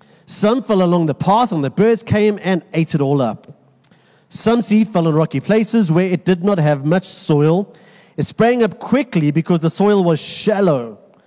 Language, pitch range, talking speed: English, 150-210 Hz, 190 wpm